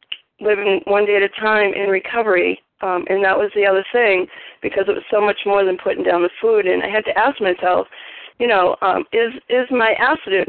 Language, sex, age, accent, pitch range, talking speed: English, female, 40-59, American, 180-225 Hz, 225 wpm